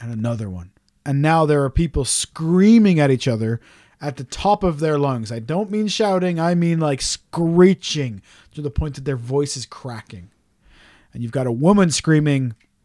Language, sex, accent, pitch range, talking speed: English, male, American, 120-165 Hz, 185 wpm